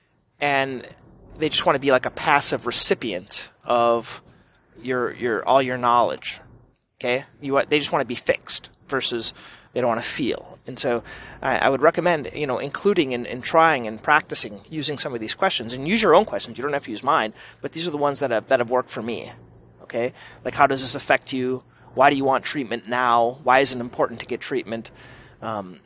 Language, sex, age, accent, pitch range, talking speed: English, male, 30-49, American, 125-160 Hz, 220 wpm